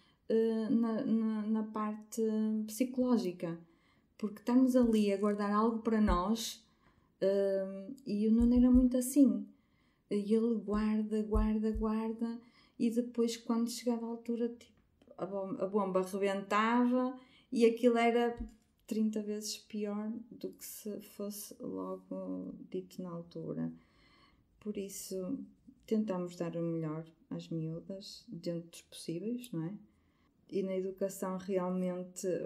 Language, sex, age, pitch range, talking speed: Portuguese, female, 20-39, 175-235 Hz, 125 wpm